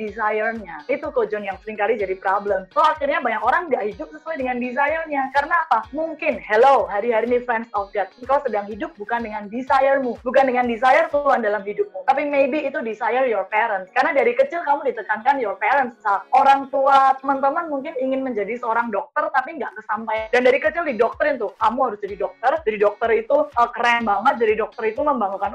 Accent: native